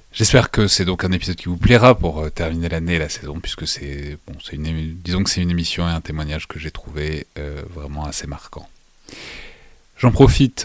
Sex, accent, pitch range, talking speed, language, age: male, French, 80-100 Hz, 210 wpm, French, 30-49